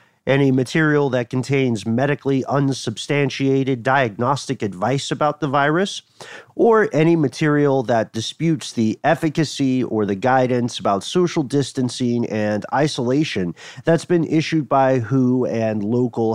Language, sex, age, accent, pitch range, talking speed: English, male, 40-59, American, 120-155 Hz, 120 wpm